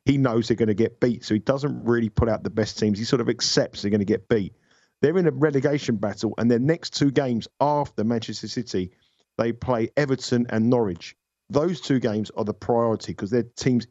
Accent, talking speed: British, 225 wpm